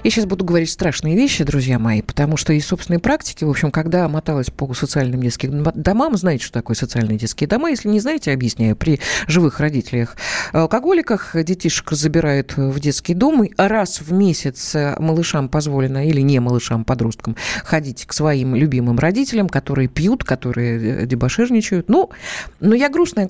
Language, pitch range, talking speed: Russian, 150-220 Hz, 160 wpm